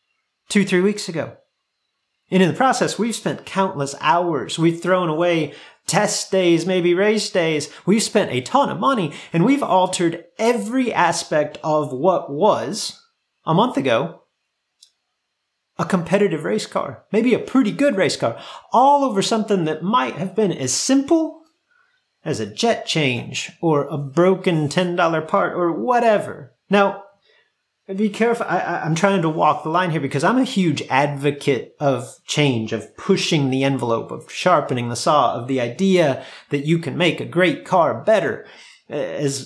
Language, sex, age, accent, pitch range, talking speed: English, male, 30-49, American, 155-205 Hz, 160 wpm